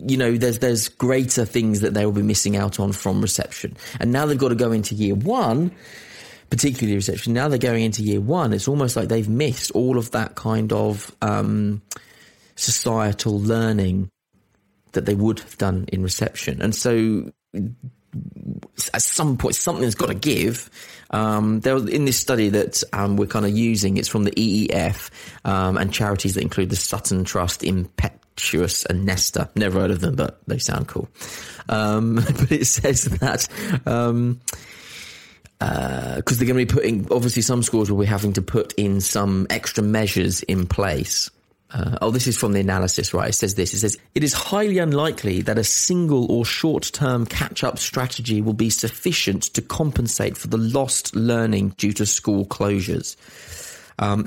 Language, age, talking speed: English, 30-49, 180 wpm